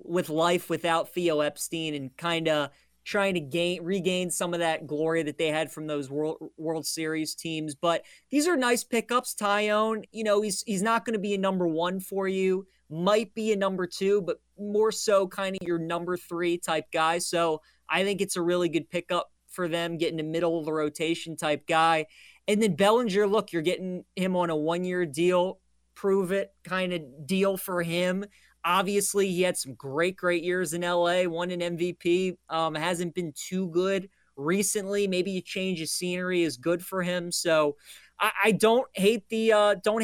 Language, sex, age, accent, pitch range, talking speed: English, male, 20-39, American, 160-195 Hz, 195 wpm